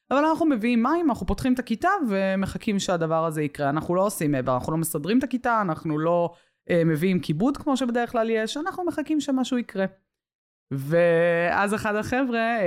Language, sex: Hebrew, female